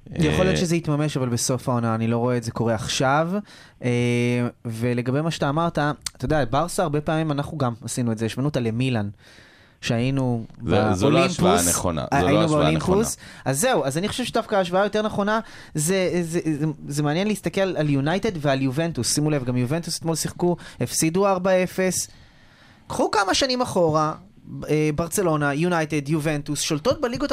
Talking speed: 150 wpm